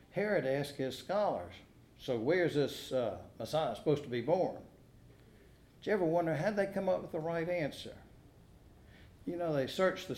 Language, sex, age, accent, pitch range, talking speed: English, male, 60-79, American, 120-155 Hz, 185 wpm